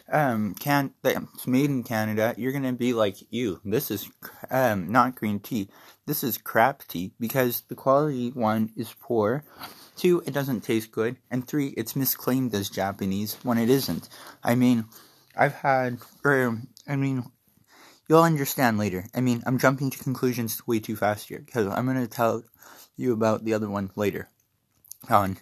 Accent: American